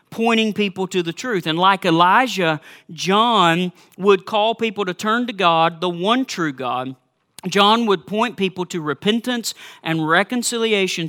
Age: 40-59